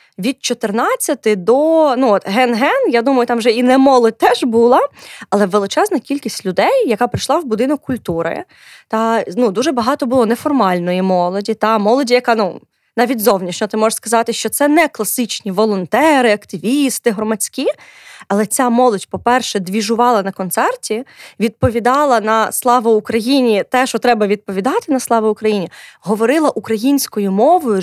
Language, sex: Ukrainian, female